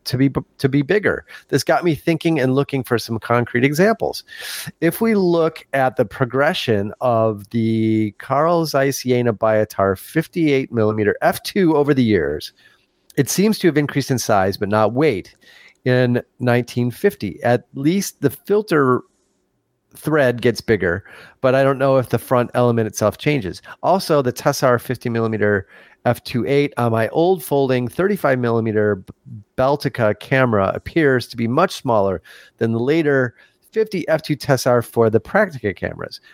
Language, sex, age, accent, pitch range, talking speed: English, male, 40-59, American, 110-150 Hz, 150 wpm